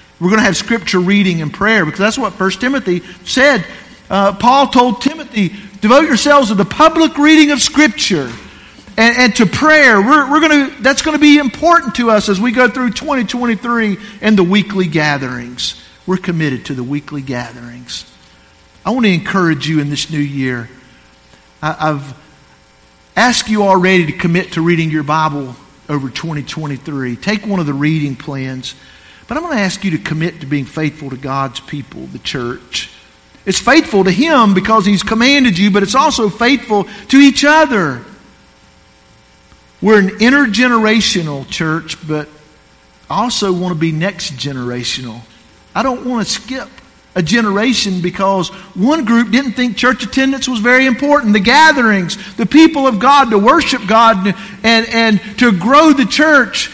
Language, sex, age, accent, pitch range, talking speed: English, male, 50-69, American, 150-245 Hz, 170 wpm